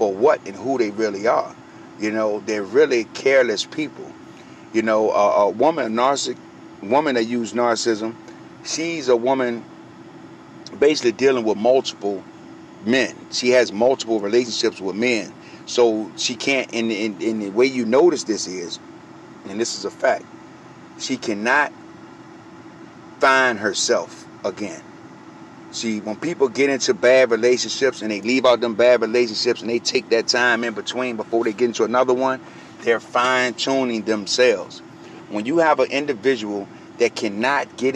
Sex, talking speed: male, 150 wpm